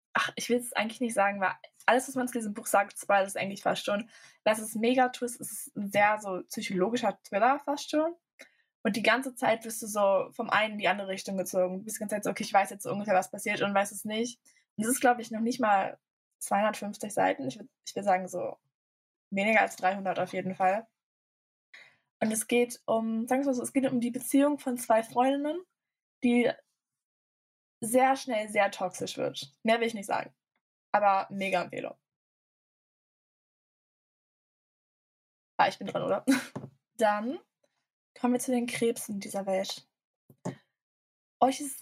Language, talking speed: German, 190 wpm